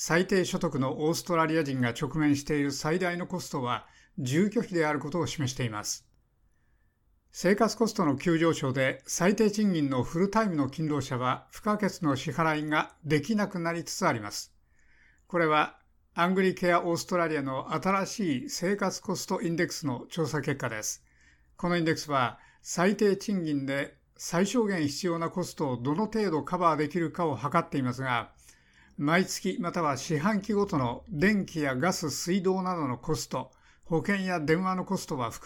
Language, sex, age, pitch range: Japanese, male, 60-79, 140-185 Hz